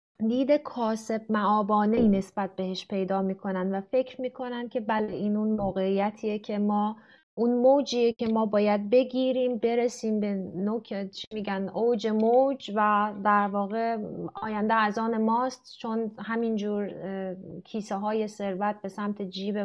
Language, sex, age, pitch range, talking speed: Persian, female, 30-49, 195-240 Hz, 130 wpm